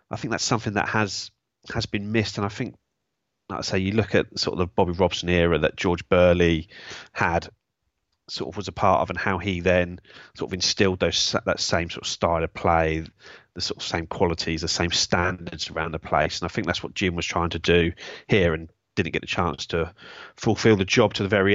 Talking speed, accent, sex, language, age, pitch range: 230 wpm, British, male, English, 30-49, 85-105 Hz